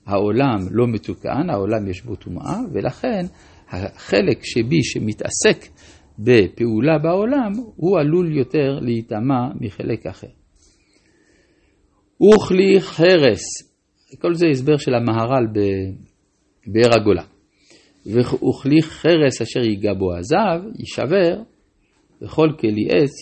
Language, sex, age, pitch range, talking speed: Hebrew, male, 50-69, 105-150 Hz, 100 wpm